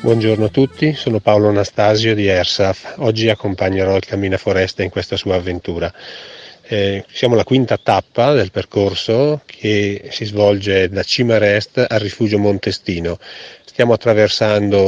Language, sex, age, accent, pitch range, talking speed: Italian, male, 40-59, native, 95-115 Hz, 135 wpm